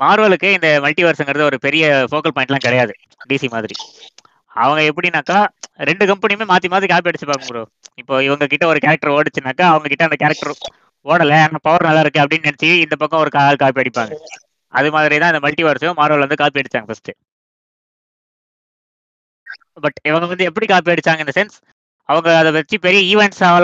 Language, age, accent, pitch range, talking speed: Tamil, 20-39, native, 145-175 Hz, 145 wpm